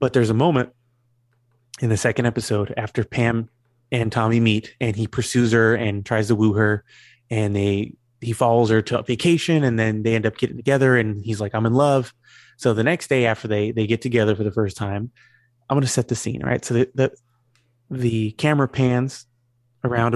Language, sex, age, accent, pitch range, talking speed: English, male, 20-39, American, 110-125 Hz, 210 wpm